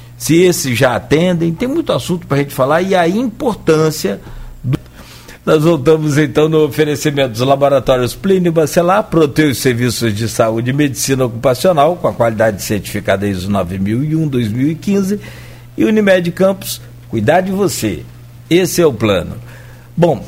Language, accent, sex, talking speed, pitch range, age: Portuguese, Brazilian, male, 145 wpm, 115-160 Hz, 60-79